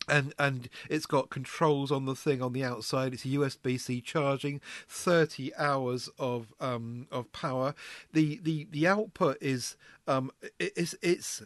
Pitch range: 125-170 Hz